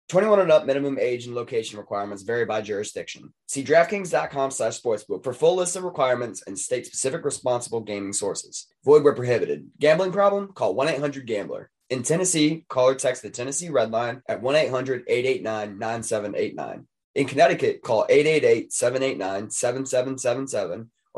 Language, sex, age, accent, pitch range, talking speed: English, male, 20-39, American, 110-165 Hz, 130 wpm